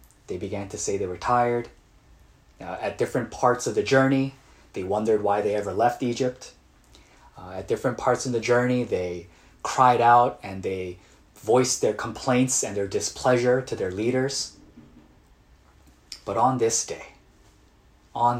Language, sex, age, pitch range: Korean, male, 30-49, 90-140 Hz